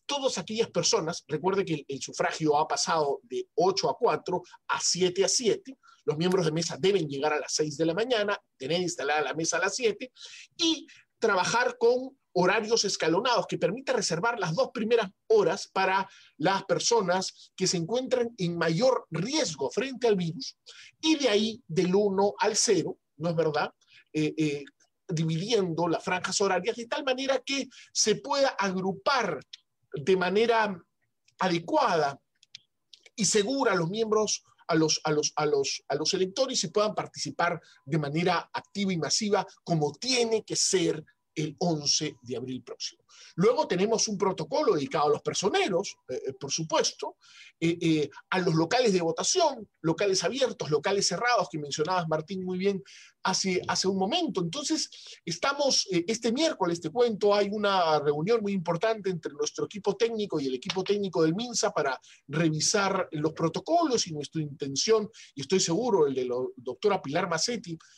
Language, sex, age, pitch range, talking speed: Spanish, male, 40-59, 165-230 Hz, 165 wpm